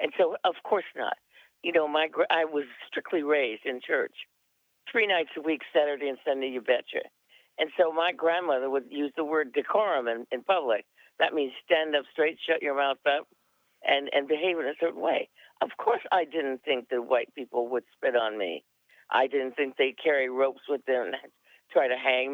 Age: 50-69